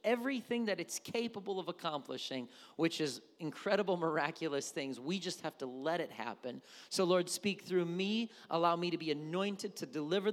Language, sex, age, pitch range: English, male, 40-59, 145-200 Hz